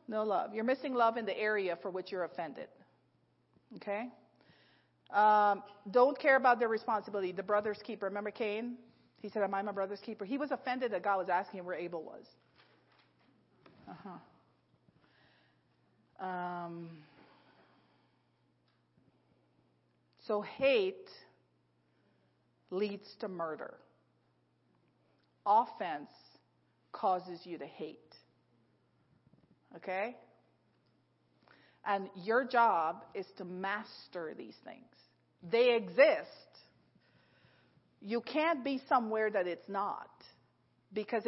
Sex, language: female, English